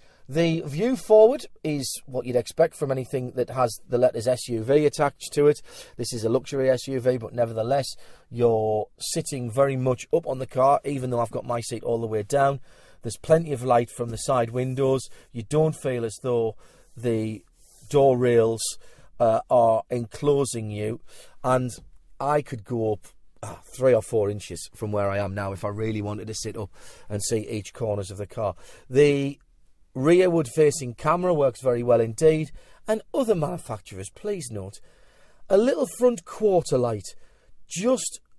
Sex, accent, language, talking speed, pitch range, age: male, British, English, 170 wpm, 115-160 Hz, 40-59